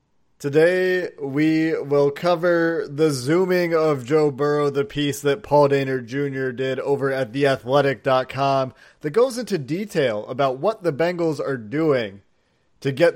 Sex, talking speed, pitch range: male, 140 wpm, 130-155 Hz